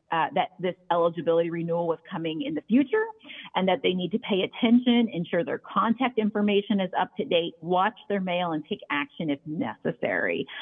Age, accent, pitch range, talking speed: 40-59, American, 170-235 Hz, 185 wpm